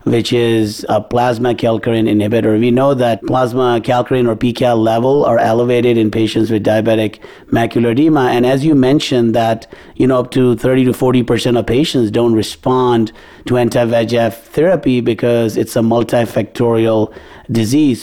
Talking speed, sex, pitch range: 155 wpm, male, 115-130 Hz